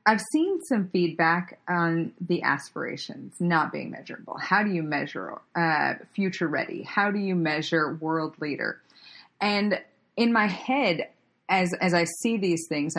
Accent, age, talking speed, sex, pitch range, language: American, 30-49, 155 wpm, female, 165-215 Hz, English